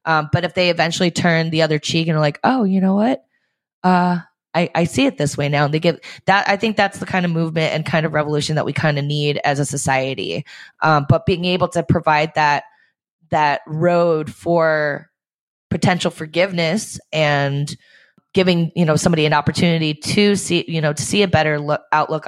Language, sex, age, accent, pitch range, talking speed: English, female, 20-39, American, 150-180 Hz, 200 wpm